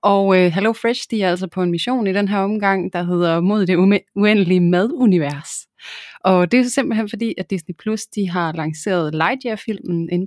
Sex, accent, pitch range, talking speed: female, native, 165-195 Hz, 185 wpm